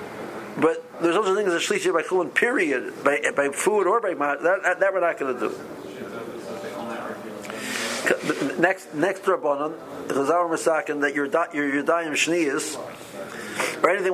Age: 50-69